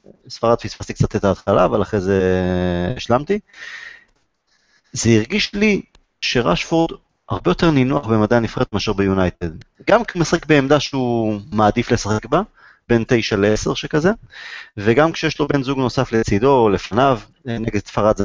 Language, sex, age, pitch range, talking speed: Hebrew, male, 30-49, 105-130 Hz, 140 wpm